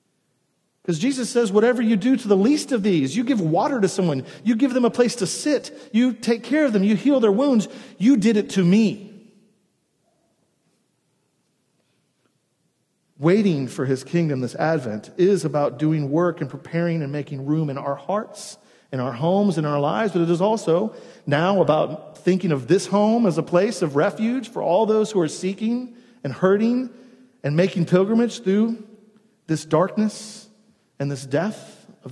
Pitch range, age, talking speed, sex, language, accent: 170-225 Hz, 40-59, 175 wpm, male, English, American